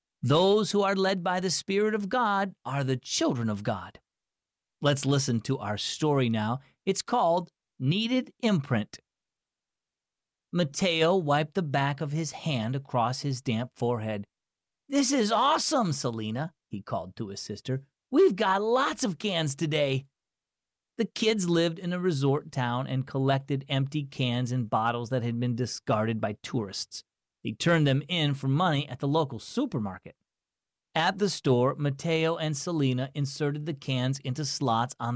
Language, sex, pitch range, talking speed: English, male, 120-185 Hz, 155 wpm